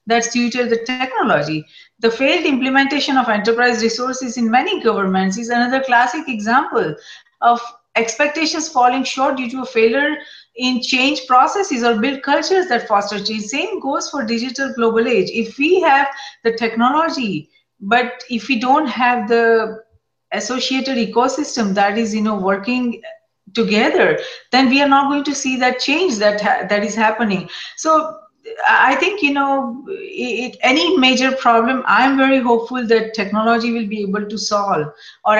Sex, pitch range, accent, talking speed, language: female, 210-265 Hz, Indian, 155 wpm, English